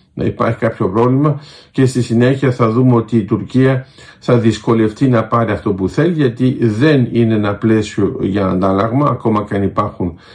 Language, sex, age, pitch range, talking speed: Greek, male, 50-69, 105-130 Hz, 170 wpm